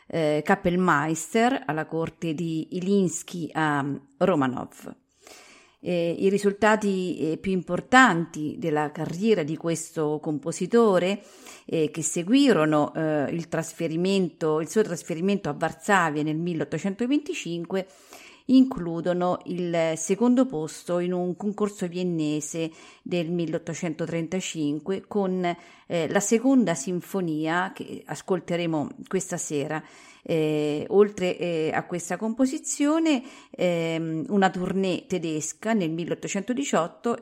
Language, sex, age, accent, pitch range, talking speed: Italian, female, 40-59, native, 160-200 Hz, 100 wpm